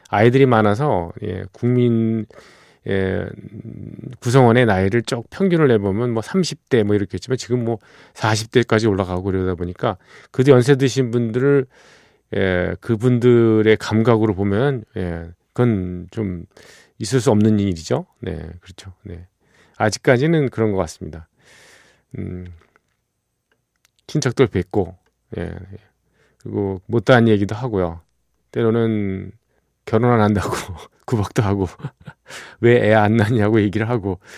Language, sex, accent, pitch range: Korean, male, native, 95-120 Hz